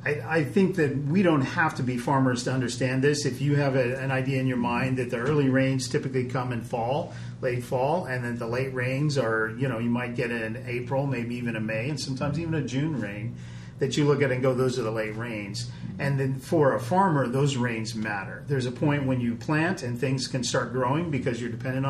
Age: 40-59